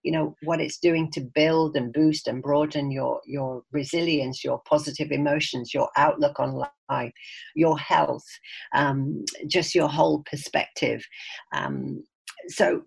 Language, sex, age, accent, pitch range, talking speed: English, female, 50-69, British, 140-170 Hz, 140 wpm